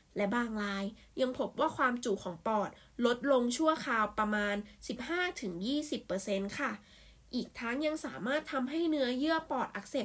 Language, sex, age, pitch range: Thai, female, 10-29, 205-265 Hz